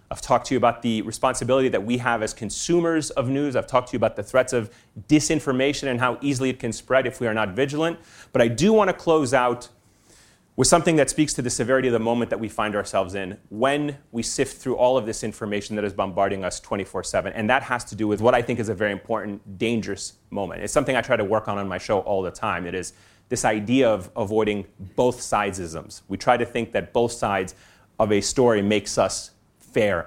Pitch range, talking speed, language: 105-135 Hz, 235 wpm, English